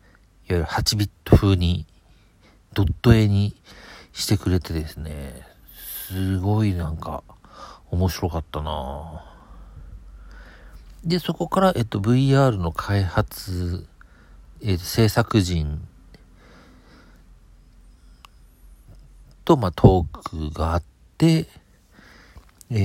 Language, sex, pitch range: Japanese, male, 80-110 Hz